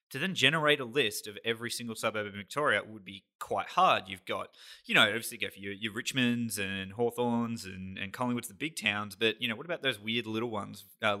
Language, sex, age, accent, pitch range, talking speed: English, male, 20-39, Australian, 105-125 Hz, 235 wpm